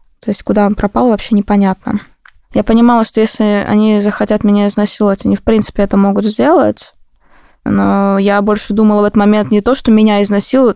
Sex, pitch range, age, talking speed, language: female, 200-230 Hz, 20-39, 185 wpm, Russian